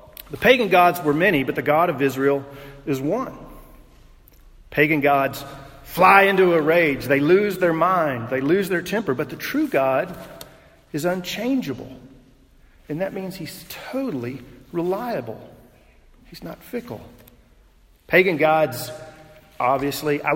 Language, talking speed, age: English, 135 wpm, 40-59